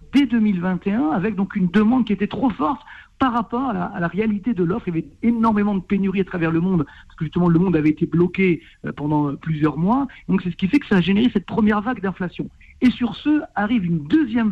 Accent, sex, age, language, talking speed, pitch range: French, male, 60-79, French, 240 wpm, 175-240 Hz